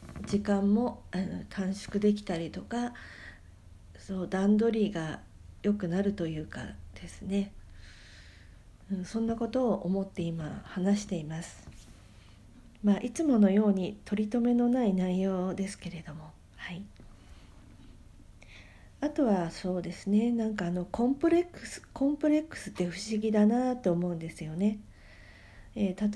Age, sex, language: 50-69, female, Japanese